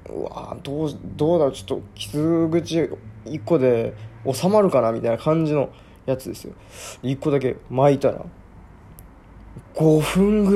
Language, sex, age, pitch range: Japanese, male, 20-39, 95-140 Hz